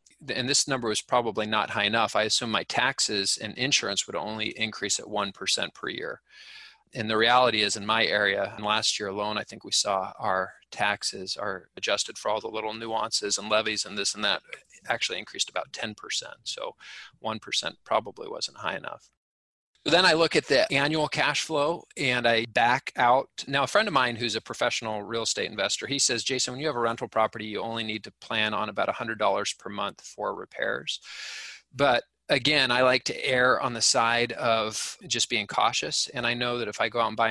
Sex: male